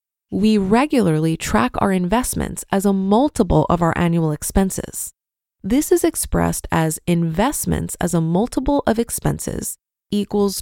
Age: 20-39